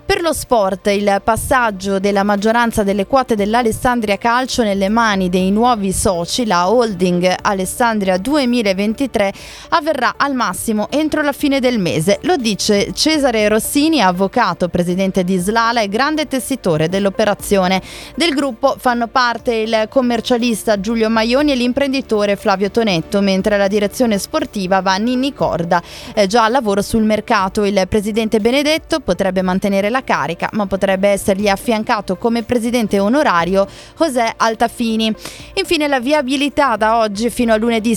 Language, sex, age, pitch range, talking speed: Italian, female, 20-39, 200-250 Hz, 140 wpm